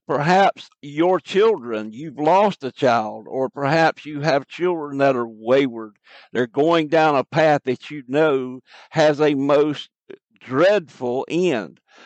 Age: 60-79